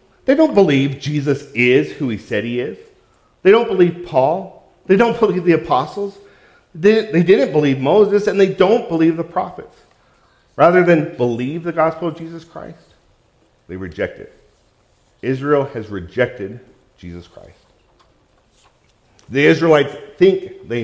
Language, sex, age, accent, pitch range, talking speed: English, male, 50-69, American, 125-175 Hz, 140 wpm